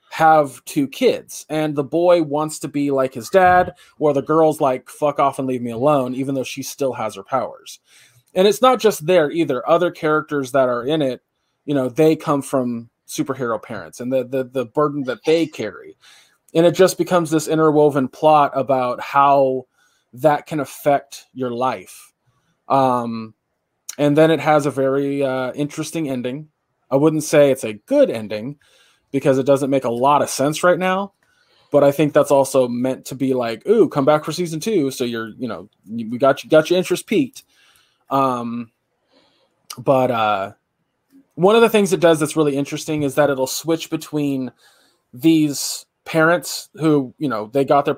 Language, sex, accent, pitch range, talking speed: English, male, American, 130-160 Hz, 185 wpm